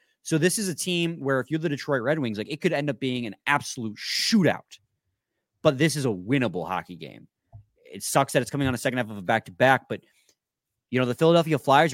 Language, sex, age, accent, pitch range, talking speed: English, male, 30-49, American, 105-140 Hz, 230 wpm